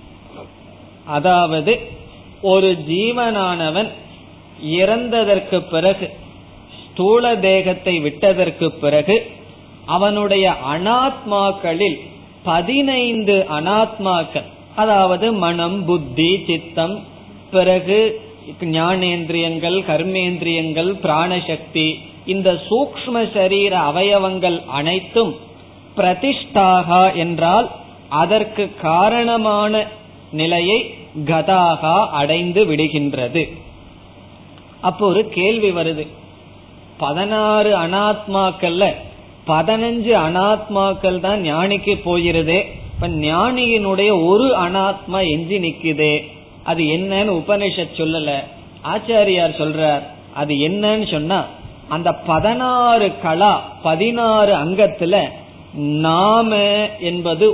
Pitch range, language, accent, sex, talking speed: 155-205 Hz, Tamil, native, male, 70 wpm